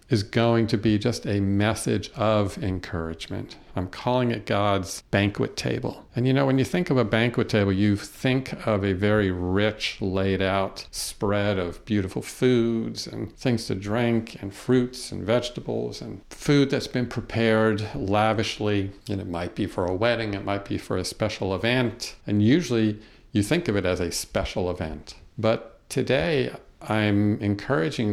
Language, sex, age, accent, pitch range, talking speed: English, male, 50-69, American, 100-120 Hz, 170 wpm